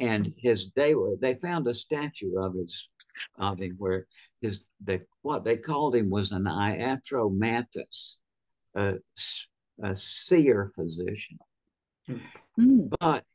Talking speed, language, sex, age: 120 wpm, English, male, 60-79